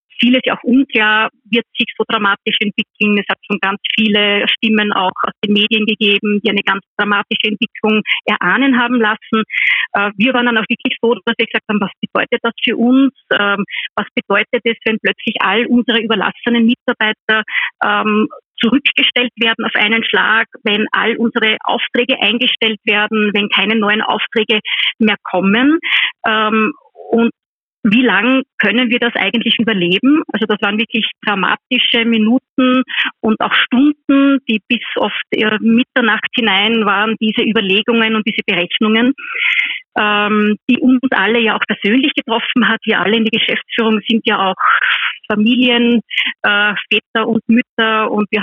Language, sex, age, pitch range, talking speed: German, female, 30-49, 210-240 Hz, 150 wpm